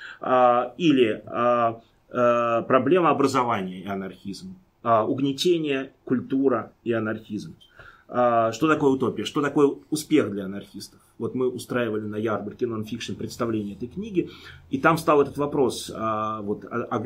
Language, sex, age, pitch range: Russian, male, 30-49, 110-140 Hz